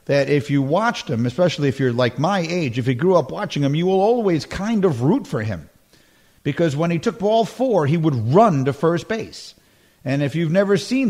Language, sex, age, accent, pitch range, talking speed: English, male, 50-69, American, 130-170 Hz, 225 wpm